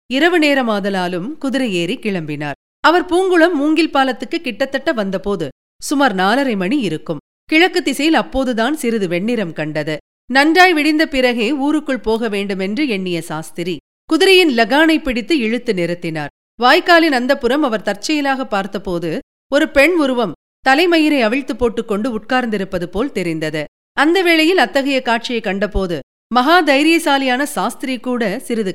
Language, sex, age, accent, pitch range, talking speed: Tamil, female, 40-59, native, 200-295 Hz, 115 wpm